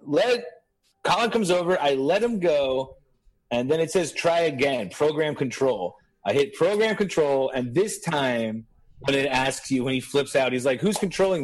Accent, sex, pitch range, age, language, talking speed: American, male, 130-170 Hz, 30-49, English, 185 wpm